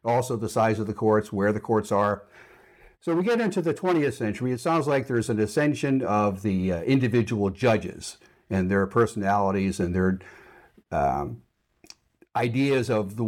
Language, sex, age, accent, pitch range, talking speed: English, male, 60-79, American, 105-135 Hz, 165 wpm